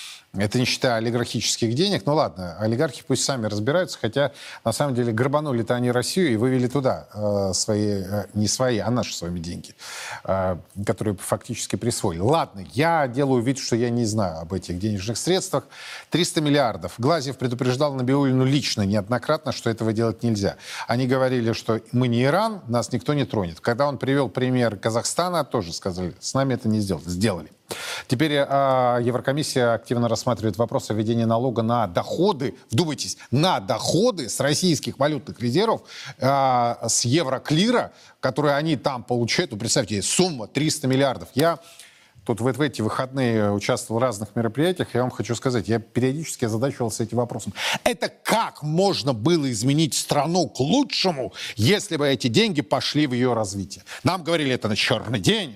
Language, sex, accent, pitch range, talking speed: Russian, male, native, 110-145 Hz, 165 wpm